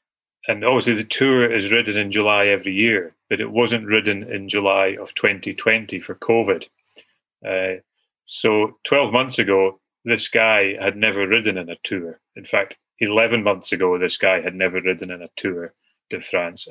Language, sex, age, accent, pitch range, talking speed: English, male, 30-49, British, 95-110 Hz, 170 wpm